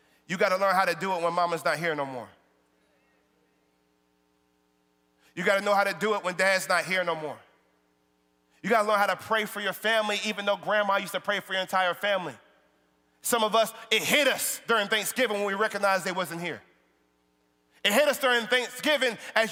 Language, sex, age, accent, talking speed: English, male, 30-49, American, 200 wpm